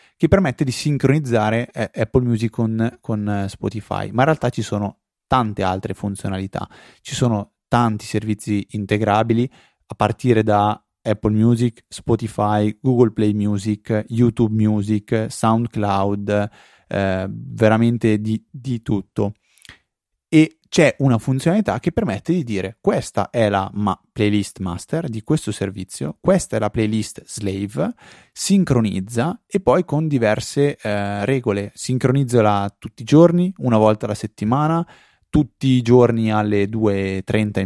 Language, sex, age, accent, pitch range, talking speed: Italian, male, 30-49, native, 105-130 Hz, 130 wpm